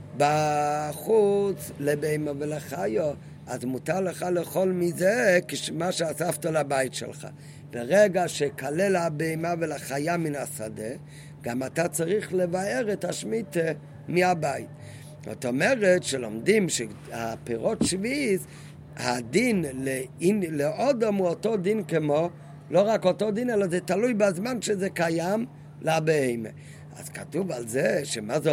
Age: 50-69